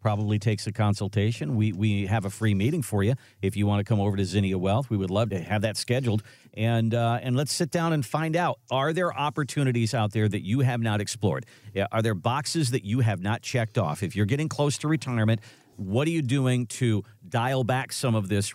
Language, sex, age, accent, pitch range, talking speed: English, male, 50-69, American, 105-130 Hz, 235 wpm